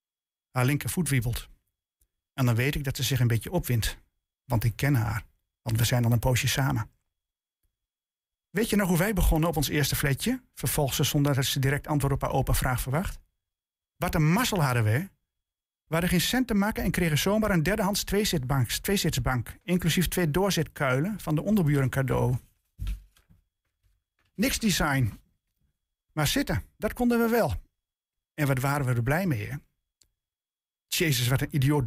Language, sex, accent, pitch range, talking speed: Dutch, male, Dutch, 120-165 Hz, 175 wpm